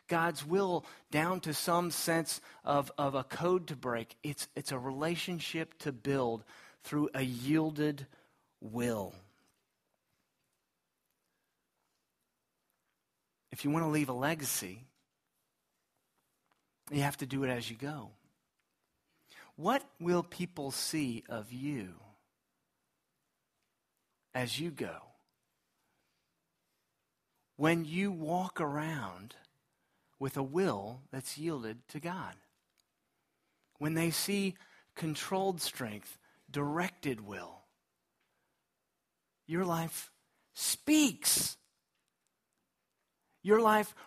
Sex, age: male, 40-59